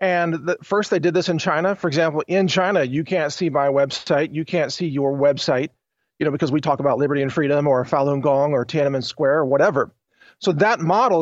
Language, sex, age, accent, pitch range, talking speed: English, male, 40-59, American, 150-180 Hz, 220 wpm